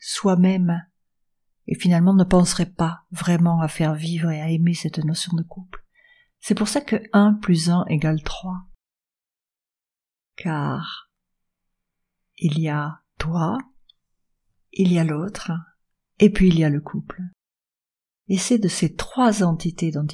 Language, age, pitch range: French, 50-69, 165-200 Hz